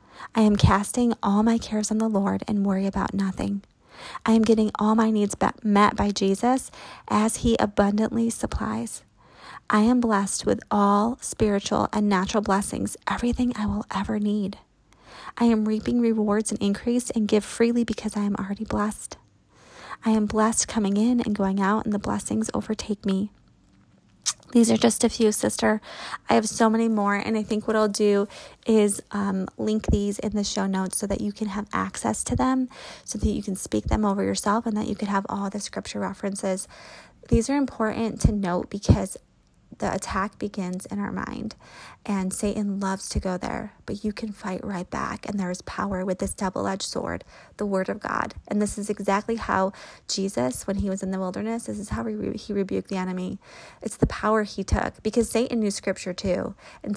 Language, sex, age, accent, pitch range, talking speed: English, female, 30-49, American, 195-220 Hz, 195 wpm